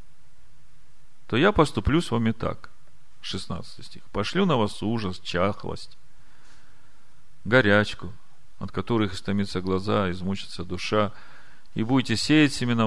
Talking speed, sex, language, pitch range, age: 110 wpm, male, Russian, 100-135 Hz, 40-59